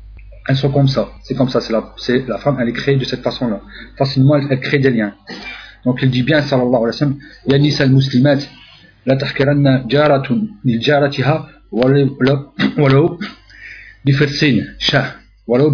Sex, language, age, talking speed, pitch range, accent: male, French, 40-59, 170 wpm, 110-140 Hz, French